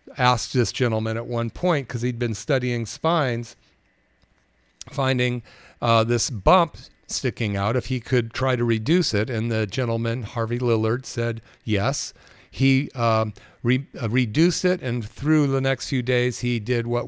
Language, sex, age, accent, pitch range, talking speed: English, male, 50-69, American, 110-130 Hz, 155 wpm